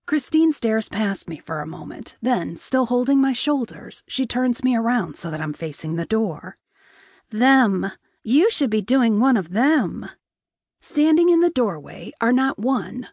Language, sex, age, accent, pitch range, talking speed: English, female, 40-59, American, 200-275 Hz, 170 wpm